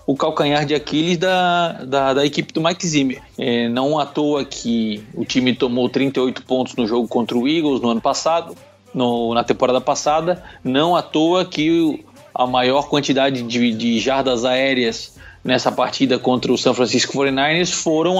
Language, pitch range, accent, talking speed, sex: Portuguese, 135-180 Hz, Brazilian, 165 wpm, male